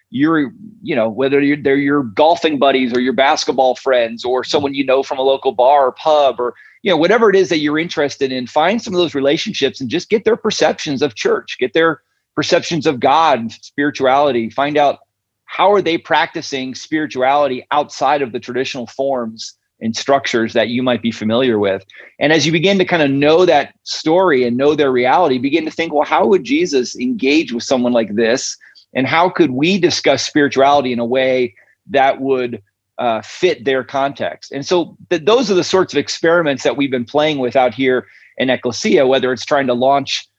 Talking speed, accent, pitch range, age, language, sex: 200 wpm, American, 125-160 Hz, 30-49, English, male